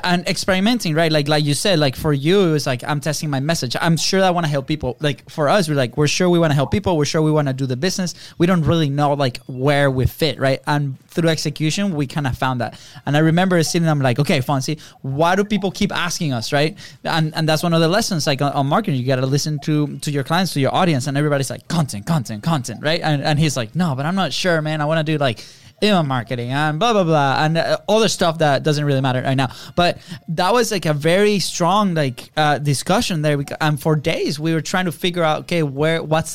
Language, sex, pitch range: English, male, 140-165 Hz